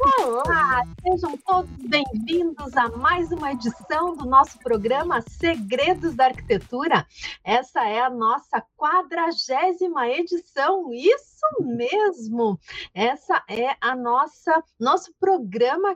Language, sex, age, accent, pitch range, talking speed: Portuguese, female, 40-59, Brazilian, 235-370 Hz, 105 wpm